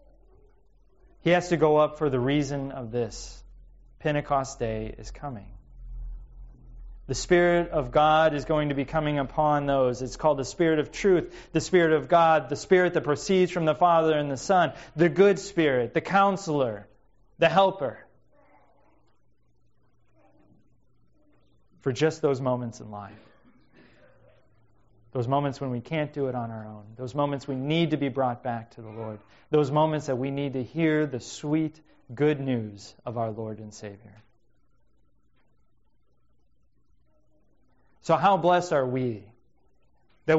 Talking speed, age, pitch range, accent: 150 wpm, 30-49, 125-175 Hz, American